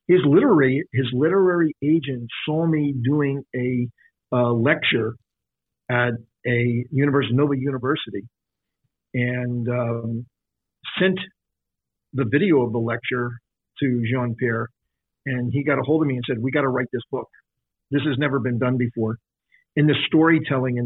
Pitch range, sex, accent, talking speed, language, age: 125-150 Hz, male, American, 145 wpm, English, 50-69